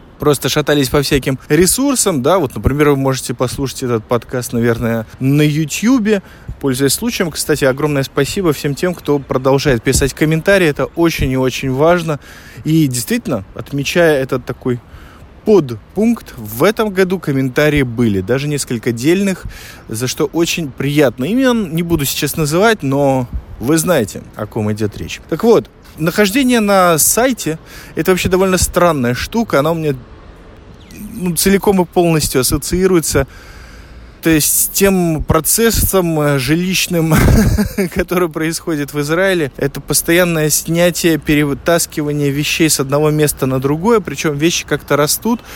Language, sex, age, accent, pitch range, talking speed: Russian, male, 20-39, native, 130-175 Hz, 135 wpm